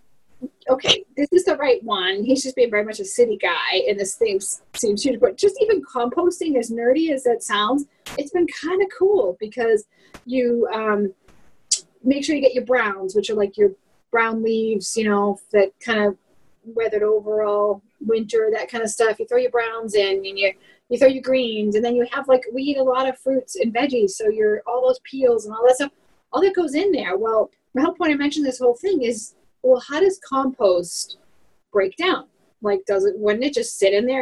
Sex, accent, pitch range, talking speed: female, American, 215-295 Hz, 220 wpm